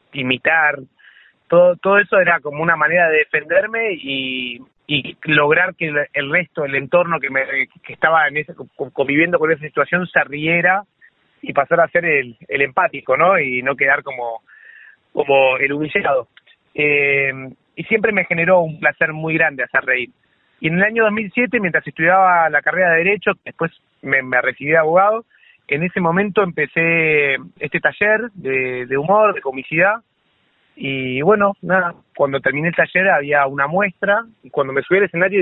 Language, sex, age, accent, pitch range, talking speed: Spanish, male, 30-49, Argentinian, 140-185 Hz, 170 wpm